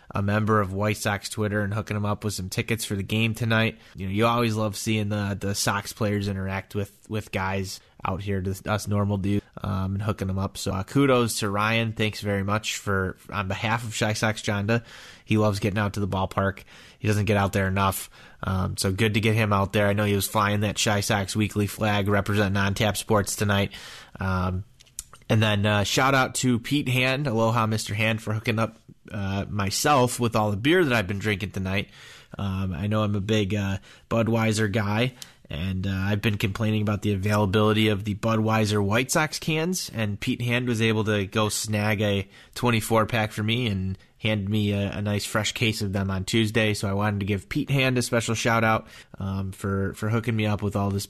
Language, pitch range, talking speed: English, 100-110 Hz, 220 wpm